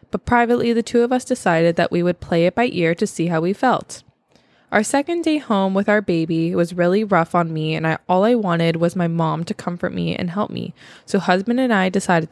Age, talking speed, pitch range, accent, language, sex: 20-39, 240 wpm, 170-220 Hz, American, English, female